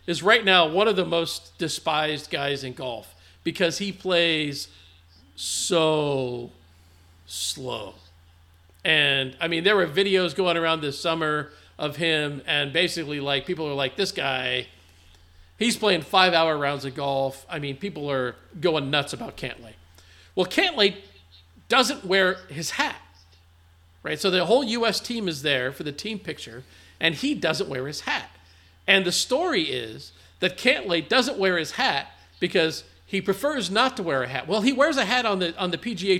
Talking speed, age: 170 wpm, 50-69